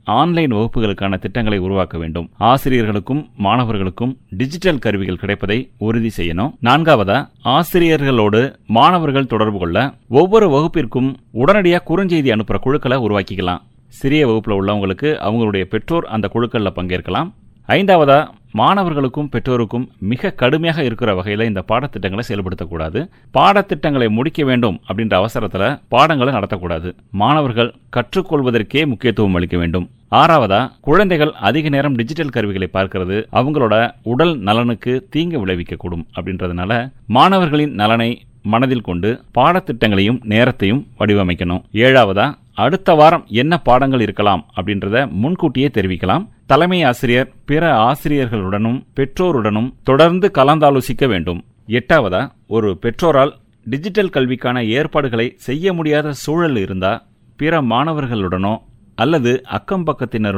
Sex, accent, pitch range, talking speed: male, Indian, 105-145 Hz, 95 wpm